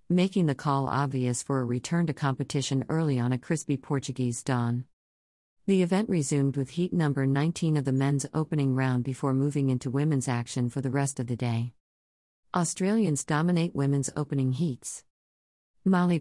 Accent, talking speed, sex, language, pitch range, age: American, 165 wpm, female, English, 130-155 Hz, 50-69